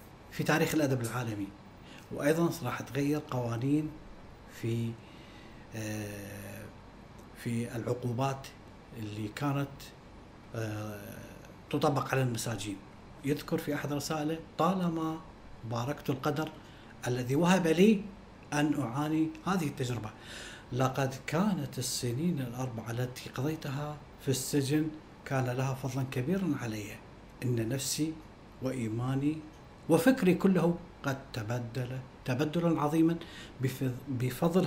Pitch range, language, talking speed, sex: 120-155 Hz, Arabic, 90 wpm, male